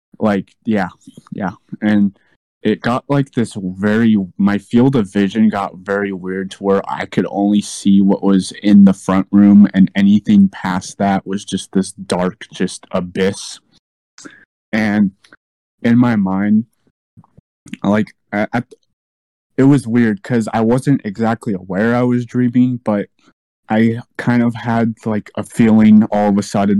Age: 20-39